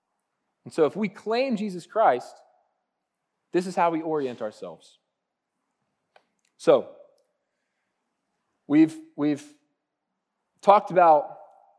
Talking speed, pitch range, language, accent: 90 wpm, 125-165 Hz, English, American